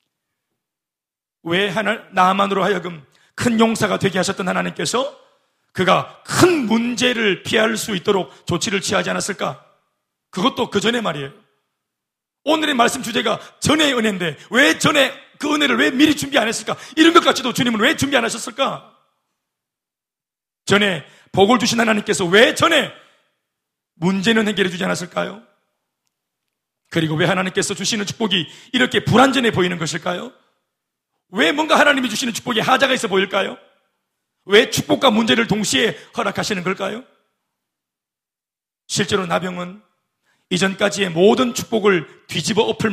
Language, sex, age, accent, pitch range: Korean, male, 40-59, native, 180-230 Hz